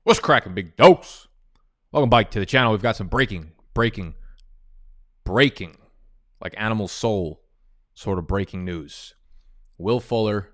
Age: 20-39